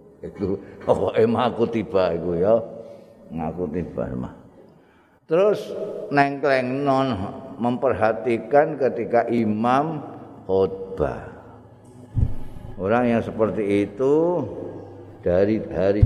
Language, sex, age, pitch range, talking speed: Indonesian, male, 50-69, 95-130 Hz, 85 wpm